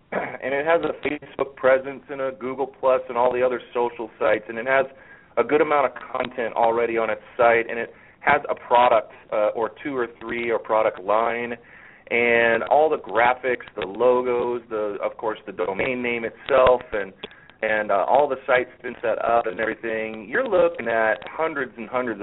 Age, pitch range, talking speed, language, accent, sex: 30-49, 115-135 Hz, 190 wpm, English, American, male